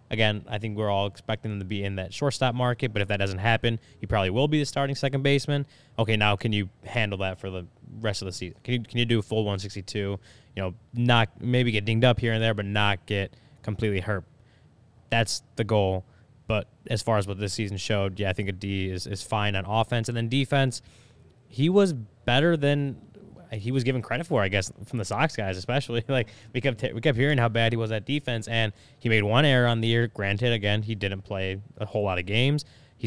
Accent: American